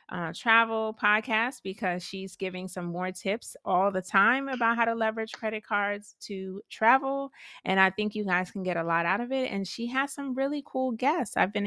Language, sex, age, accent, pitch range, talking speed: English, female, 30-49, American, 185-230 Hz, 210 wpm